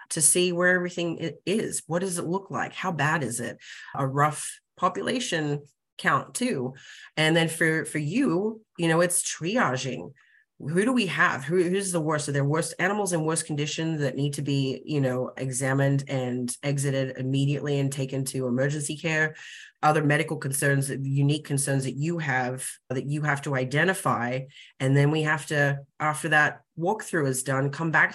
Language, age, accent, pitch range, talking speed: English, 30-49, American, 140-165 Hz, 175 wpm